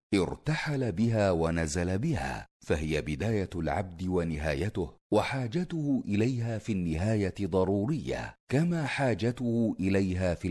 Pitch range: 90-125 Hz